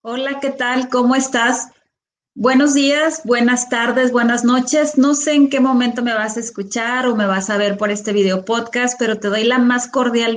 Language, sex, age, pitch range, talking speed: English, female, 30-49, 225-260 Hz, 205 wpm